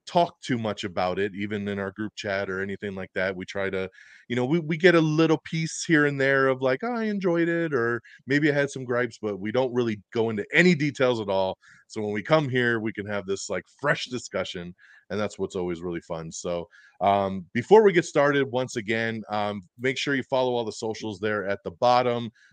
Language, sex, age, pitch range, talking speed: English, male, 30-49, 100-140 Hz, 230 wpm